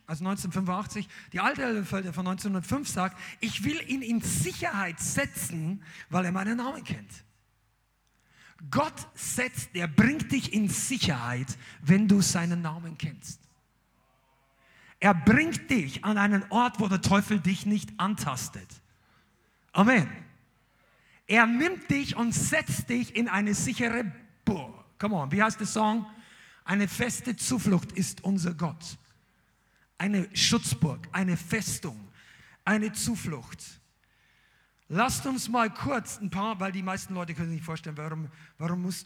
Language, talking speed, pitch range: German, 135 wpm, 155-195 Hz